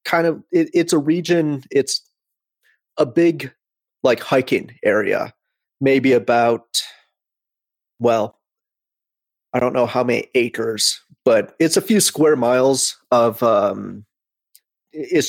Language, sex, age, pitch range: English, male, 30-49, 115-145 Hz